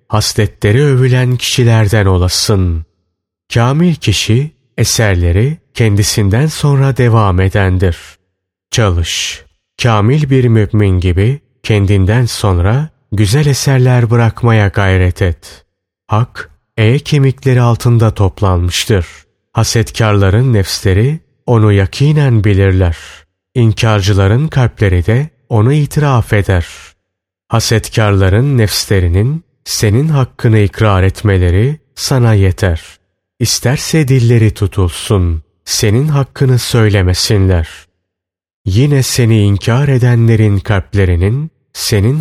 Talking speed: 80 wpm